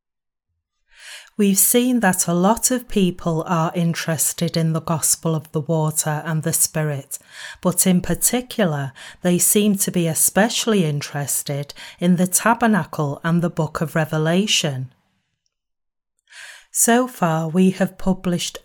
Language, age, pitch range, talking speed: English, 30-49, 160-205 Hz, 130 wpm